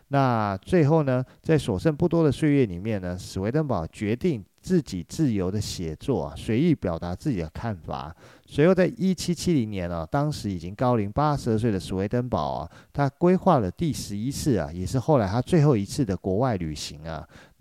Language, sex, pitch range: Chinese, male, 95-145 Hz